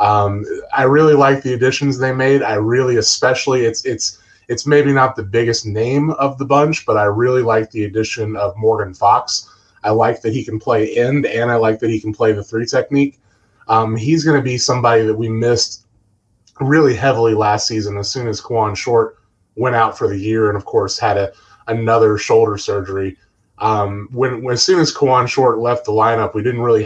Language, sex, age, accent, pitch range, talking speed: English, male, 20-39, American, 105-130 Hz, 205 wpm